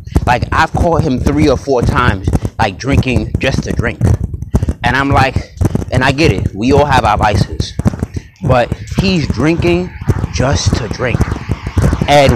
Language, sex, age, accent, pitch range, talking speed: English, male, 30-49, American, 100-135 Hz, 155 wpm